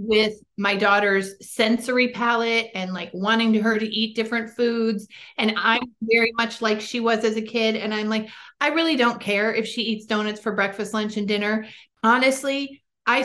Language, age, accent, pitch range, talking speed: English, 40-59, American, 215-280 Hz, 185 wpm